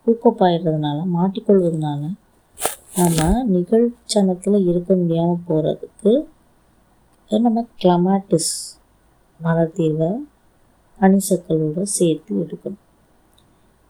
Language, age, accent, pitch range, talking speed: Tamil, 20-39, native, 165-205 Hz, 55 wpm